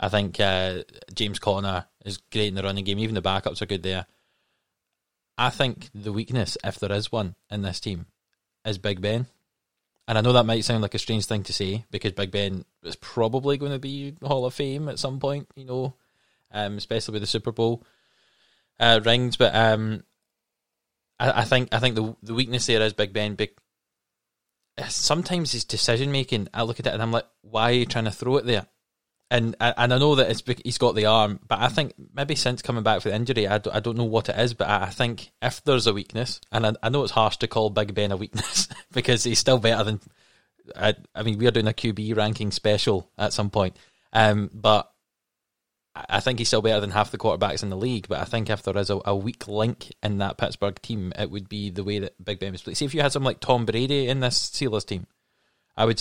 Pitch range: 105-120 Hz